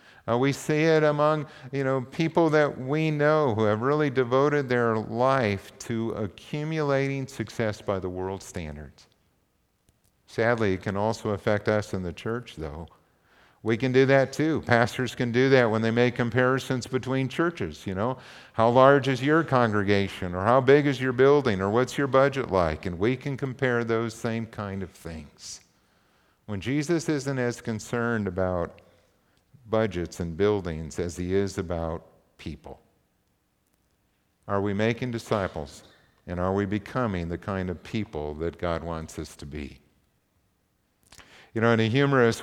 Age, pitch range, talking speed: 50-69, 100-130 Hz, 155 wpm